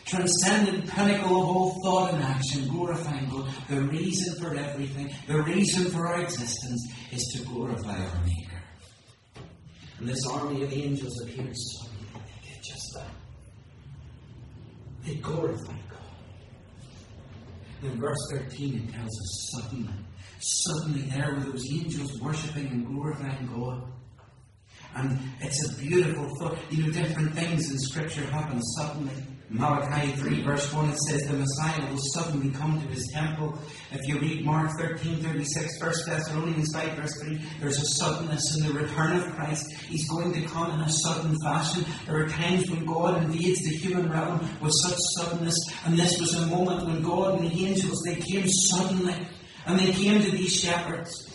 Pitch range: 130-175 Hz